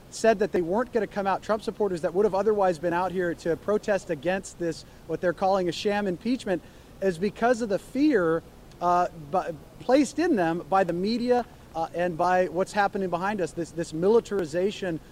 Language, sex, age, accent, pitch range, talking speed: English, male, 30-49, American, 165-215 Hz, 195 wpm